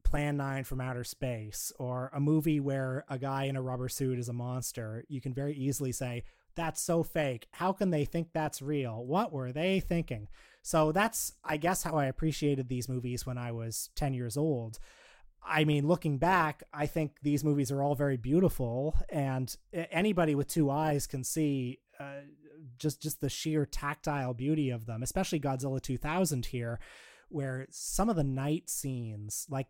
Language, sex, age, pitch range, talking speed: English, male, 30-49, 125-155 Hz, 180 wpm